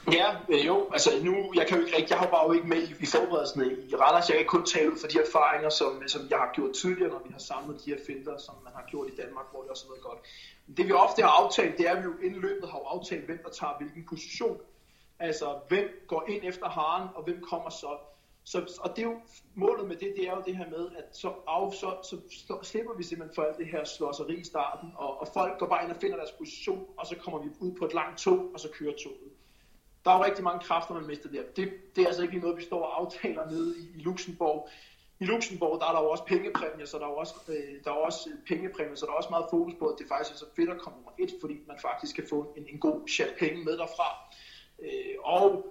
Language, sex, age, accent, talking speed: Danish, male, 30-49, native, 260 wpm